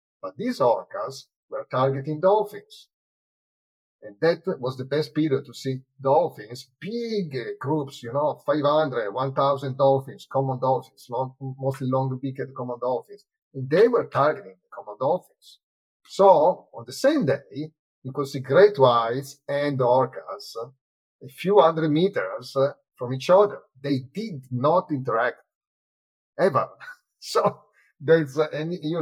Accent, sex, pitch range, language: Italian, male, 130-170 Hz, English